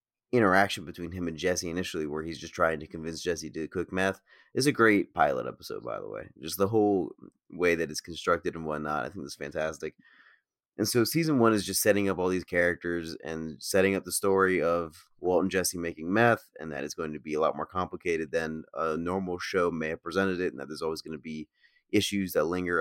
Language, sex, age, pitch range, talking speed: English, male, 30-49, 80-100 Hz, 230 wpm